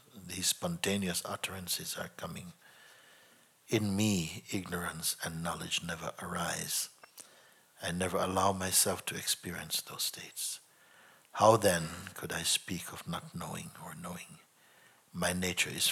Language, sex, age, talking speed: English, male, 60-79, 125 wpm